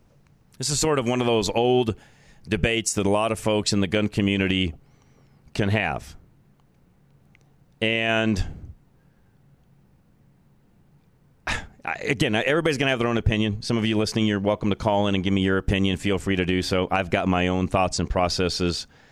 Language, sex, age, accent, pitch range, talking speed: English, male, 30-49, American, 95-115 Hz, 175 wpm